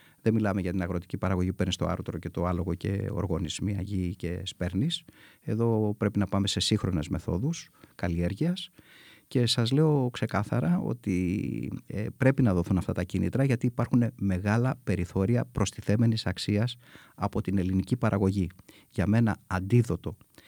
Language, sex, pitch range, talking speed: Greek, male, 95-120 Hz, 145 wpm